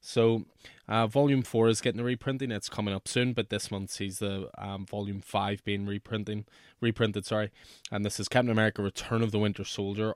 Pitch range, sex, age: 100-115 Hz, male, 20-39